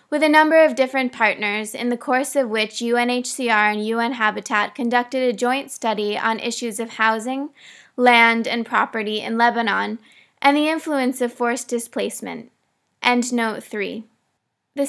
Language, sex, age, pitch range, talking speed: English, female, 20-39, 220-260 Hz, 155 wpm